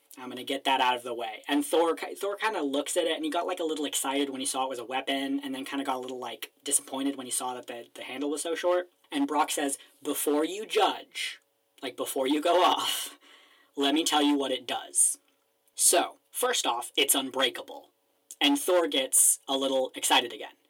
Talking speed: 230 wpm